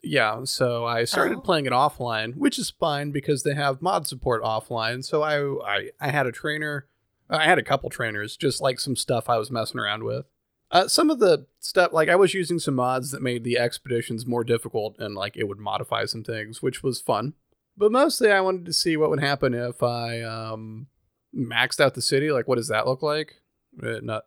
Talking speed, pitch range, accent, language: 220 wpm, 115-140 Hz, American, English